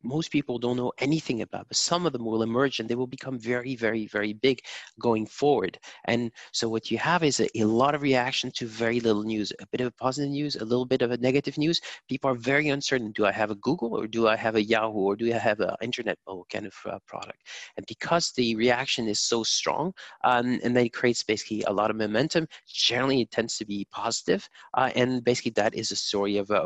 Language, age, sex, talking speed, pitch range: English, 30-49, male, 245 wpm, 110-130 Hz